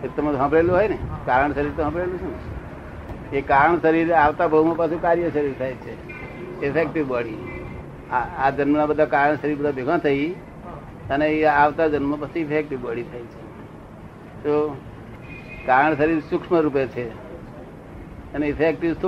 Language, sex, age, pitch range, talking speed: Gujarati, male, 60-79, 140-160 Hz, 55 wpm